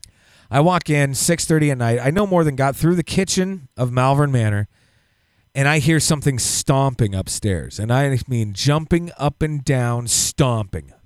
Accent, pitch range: American, 110-160 Hz